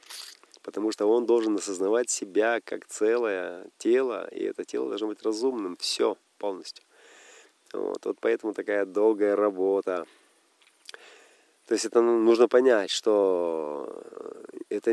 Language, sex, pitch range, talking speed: Russian, male, 345-440 Hz, 120 wpm